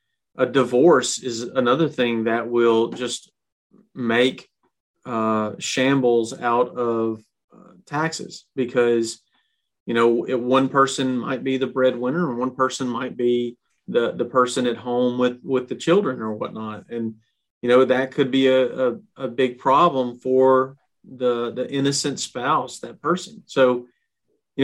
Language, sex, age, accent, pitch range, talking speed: English, male, 40-59, American, 115-145 Hz, 145 wpm